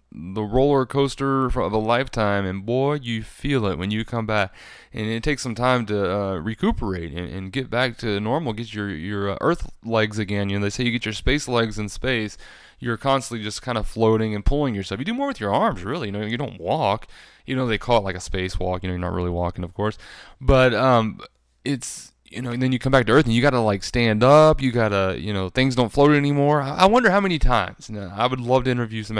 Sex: male